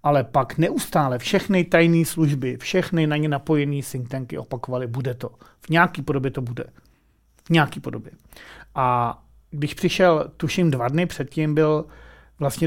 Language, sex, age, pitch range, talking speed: Czech, male, 40-59, 140-175 Hz, 150 wpm